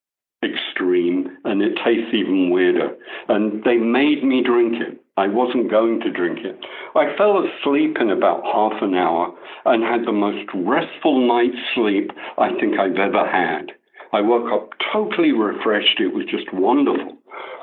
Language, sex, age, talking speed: English, male, 60-79, 160 wpm